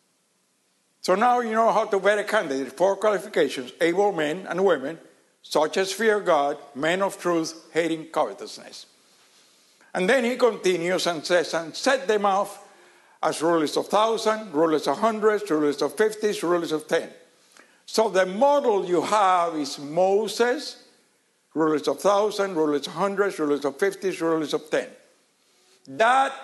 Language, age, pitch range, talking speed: English, 60-79, 150-205 Hz, 150 wpm